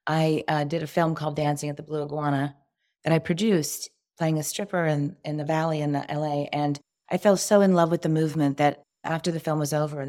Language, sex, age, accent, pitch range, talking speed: English, female, 40-59, American, 150-170 Hz, 240 wpm